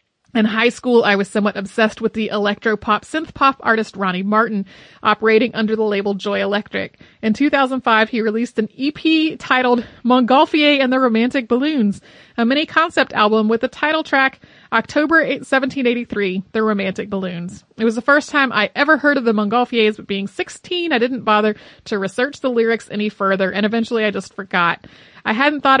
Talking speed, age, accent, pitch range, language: 175 wpm, 30-49, American, 210-275 Hz, English